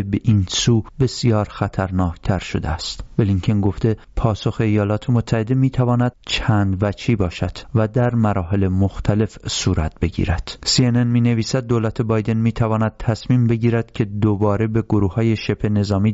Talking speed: 145 wpm